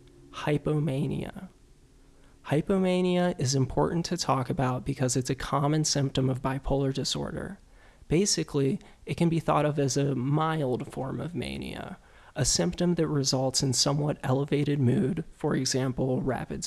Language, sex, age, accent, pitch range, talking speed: English, male, 20-39, American, 130-160 Hz, 135 wpm